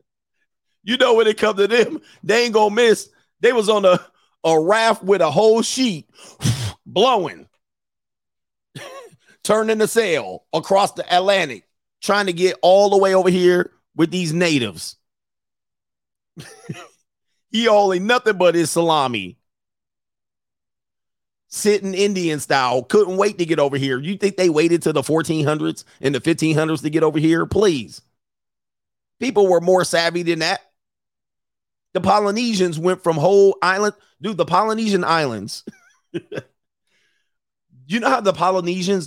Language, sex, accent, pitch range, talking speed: English, male, American, 160-200 Hz, 140 wpm